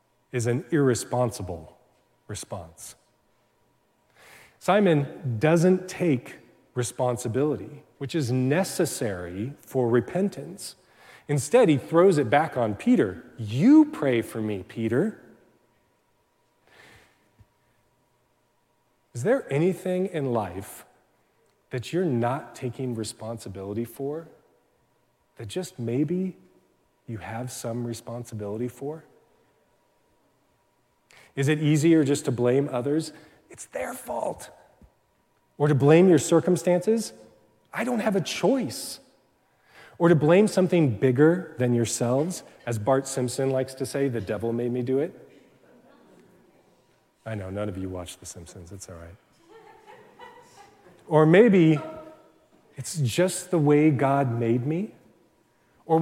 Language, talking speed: English, 110 wpm